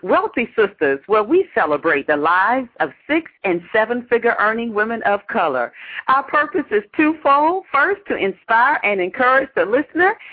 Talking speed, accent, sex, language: 145 wpm, American, female, English